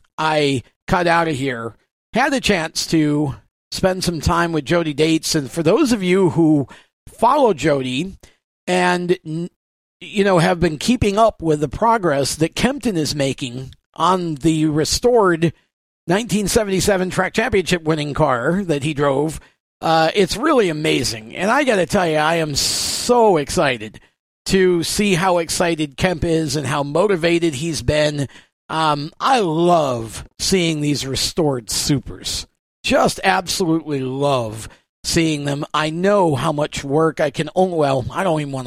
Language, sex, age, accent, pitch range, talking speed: English, male, 50-69, American, 145-180 Hz, 150 wpm